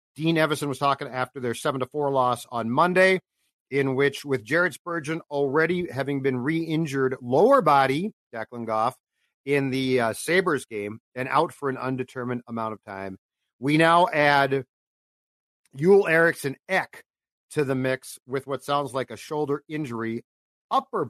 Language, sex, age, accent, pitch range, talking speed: English, male, 50-69, American, 125-160 Hz, 155 wpm